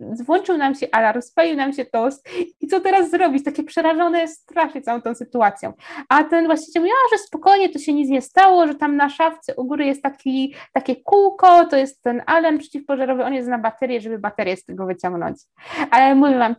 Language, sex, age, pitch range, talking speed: Polish, female, 20-39, 230-305 Hz, 200 wpm